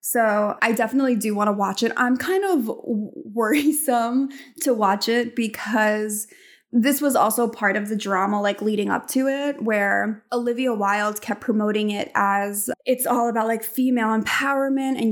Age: 20-39